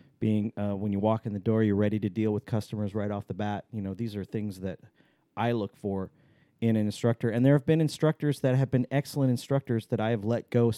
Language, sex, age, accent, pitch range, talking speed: English, male, 40-59, American, 105-120 Hz, 250 wpm